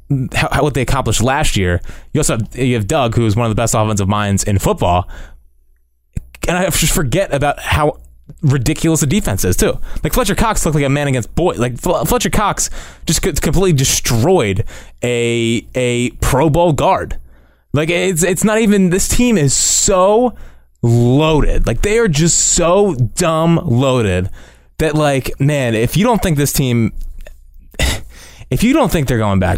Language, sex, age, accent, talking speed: English, male, 20-39, American, 170 wpm